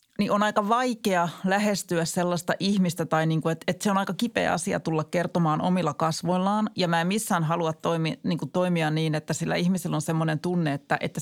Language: Finnish